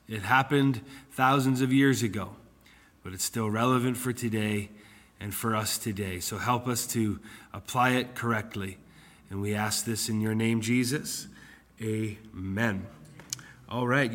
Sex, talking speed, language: male, 145 wpm, English